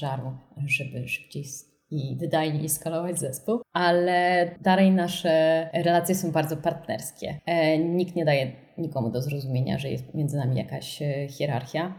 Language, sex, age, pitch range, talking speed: Polish, female, 20-39, 140-165 Hz, 125 wpm